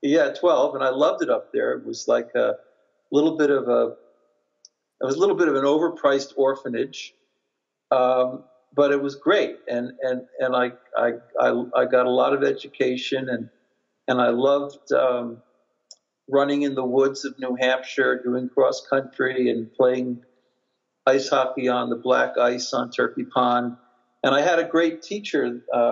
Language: English